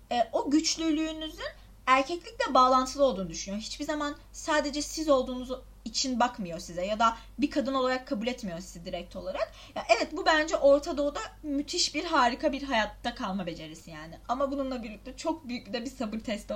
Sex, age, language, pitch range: female, 30-49, Turkish, 225-290 Hz